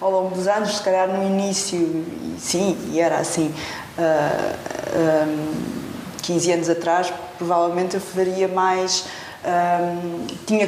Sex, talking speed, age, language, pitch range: female, 110 wpm, 20-39, Portuguese, 175-210 Hz